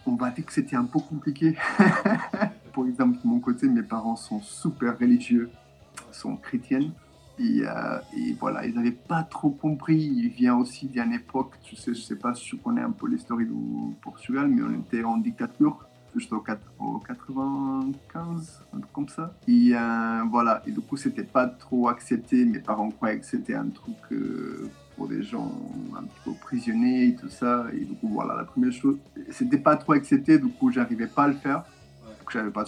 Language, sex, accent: French, male, French